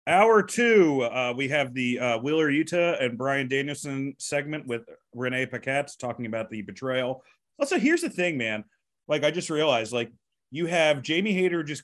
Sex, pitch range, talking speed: male, 125-160 Hz, 175 wpm